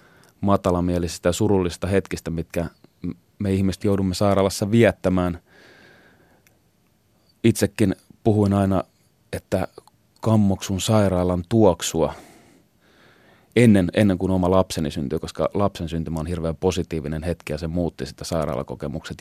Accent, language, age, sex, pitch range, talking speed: native, Finnish, 30-49, male, 85-100 Hz, 110 wpm